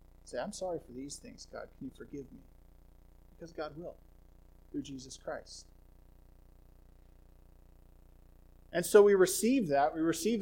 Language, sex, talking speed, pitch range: English, male, 140 wpm, 130-175 Hz